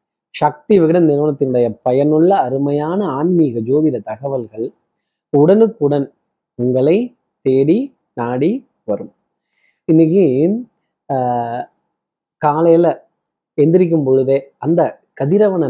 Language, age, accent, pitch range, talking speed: Tamil, 30-49, native, 130-170 Hz, 75 wpm